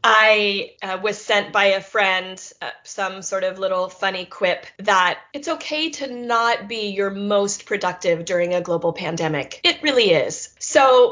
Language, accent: English, American